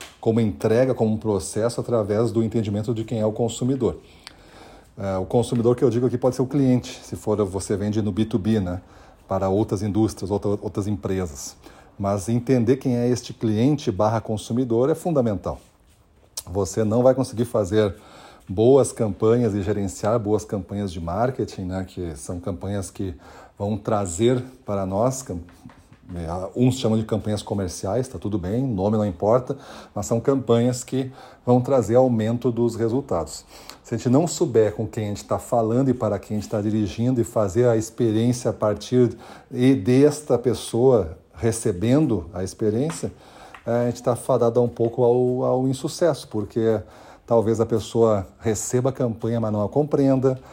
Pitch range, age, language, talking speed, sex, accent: 105-125 Hz, 40-59, Portuguese, 165 wpm, male, Brazilian